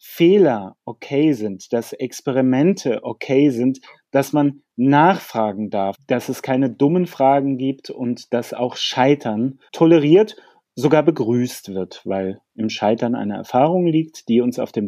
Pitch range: 120-155 Hz